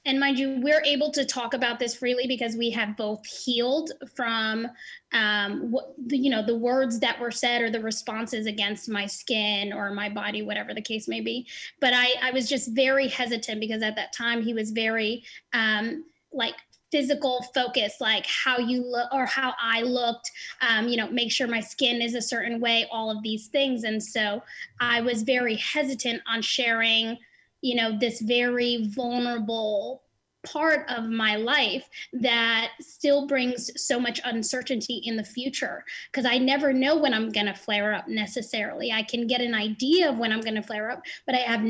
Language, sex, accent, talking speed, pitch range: English, female, American, 185 wpm, 225-260 Hz